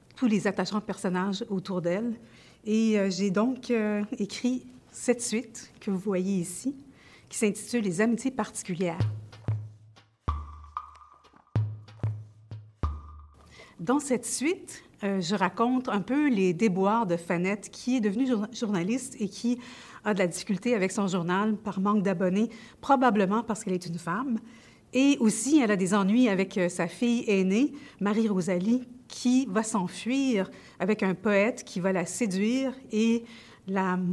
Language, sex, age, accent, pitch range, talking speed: French, female, 50-69, Canadian, 185-235 Hz, 150 wpm